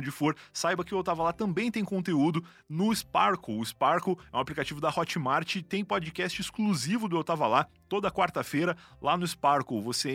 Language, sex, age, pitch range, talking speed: Portuguese, male, 30-49, 130-180 Hz, 190 wpm